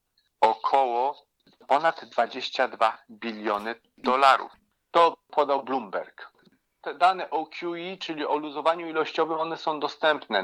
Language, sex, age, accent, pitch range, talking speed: Polish, male, 40-59, native, 115-165 Hz, 110 wpm